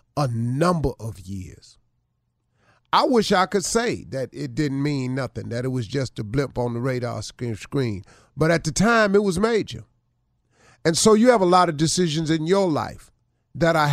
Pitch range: 120-170 Hz